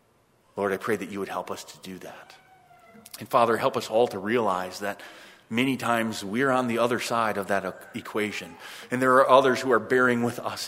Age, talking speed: 30-49, 215 wpm